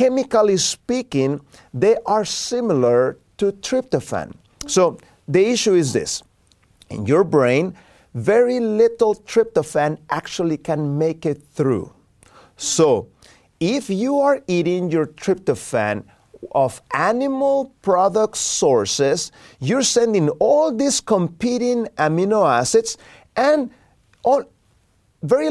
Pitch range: 155-240 Hz